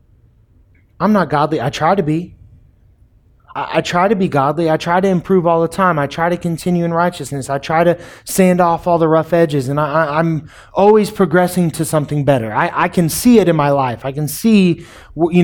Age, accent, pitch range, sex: 20-39, American, 145-190 Hz, male